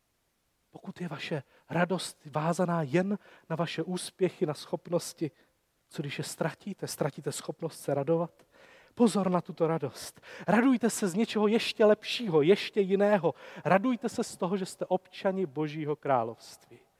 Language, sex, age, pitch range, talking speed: Czech, male, 40-59, 150-200 Hz, 140 wpm